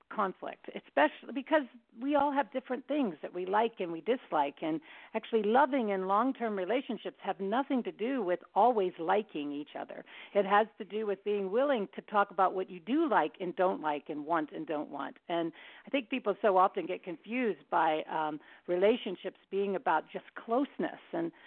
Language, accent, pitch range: English, American, 160-230 Hz